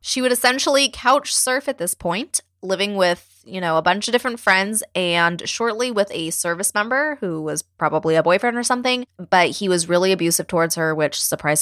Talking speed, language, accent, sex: 200 wpm, English, American, female